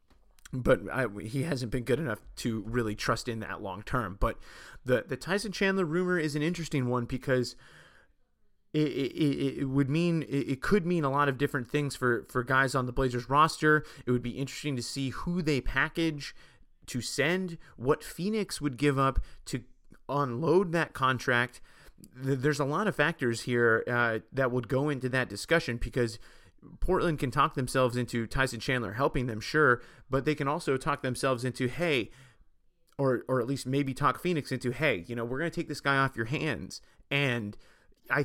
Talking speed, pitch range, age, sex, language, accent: 185 wpm, 120-145 Hz, 30-49, male, English, American